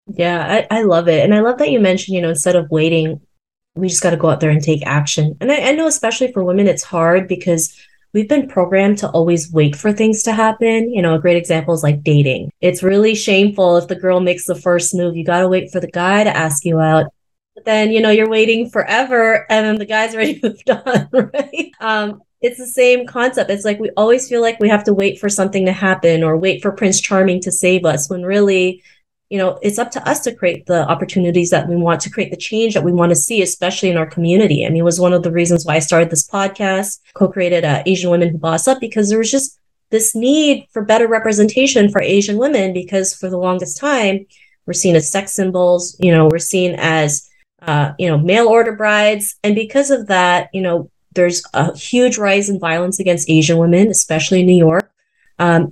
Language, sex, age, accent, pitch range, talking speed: English, female, 20-39, American, 170-215 Hz, 235 wpm